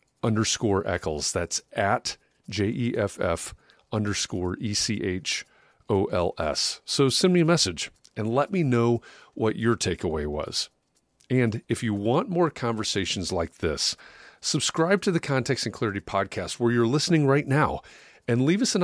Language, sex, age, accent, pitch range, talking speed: English, male, 40-59, American, 100-135 Hz, 165 wpm